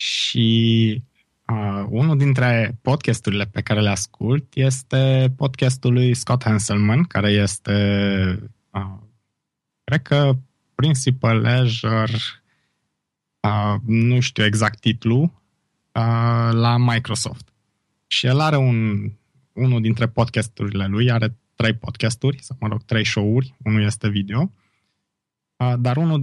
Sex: male